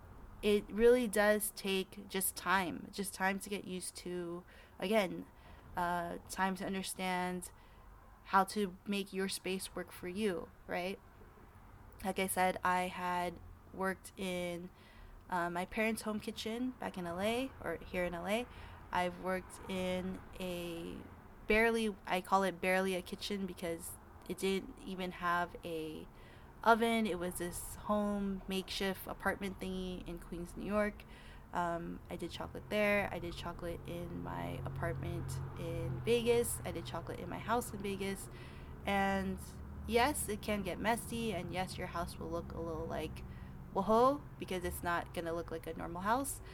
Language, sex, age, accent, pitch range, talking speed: English, female, 20-39, American, 170-205 Hz, 155 wpm